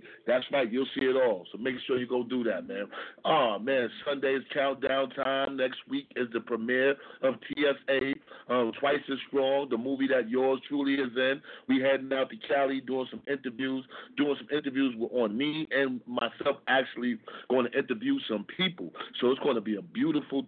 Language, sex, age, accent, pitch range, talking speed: English, male, 40-59, American, 115-135 Hz, 200 wpm